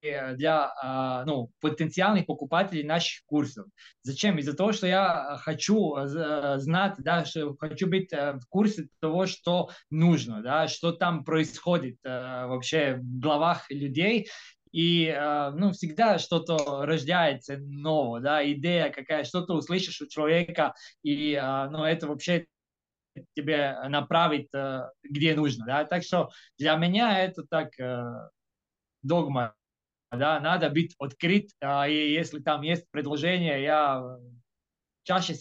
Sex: male